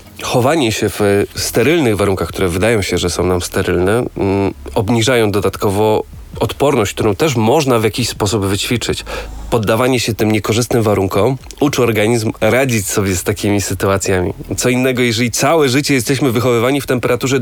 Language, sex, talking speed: Polish, male, 150 wpm